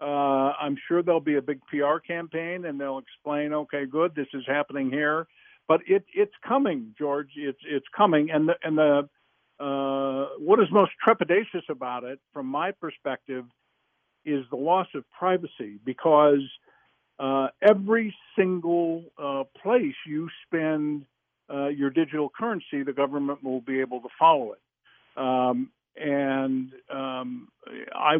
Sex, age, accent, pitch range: male, 60-79, American, 135-175 Hz